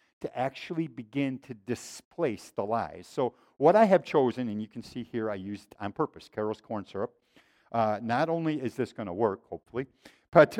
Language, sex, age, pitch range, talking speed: English, male, 50-69, 135-200 Hz, 195 wpm